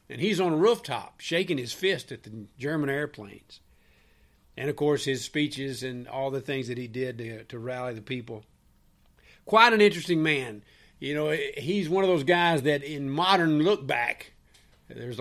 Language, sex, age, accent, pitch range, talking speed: English, male, 50-69, American, 120-155 Hz, 180 wpm